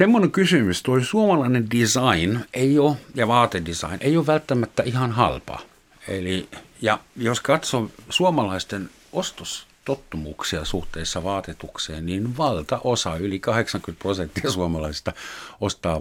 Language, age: Finnish, 60-79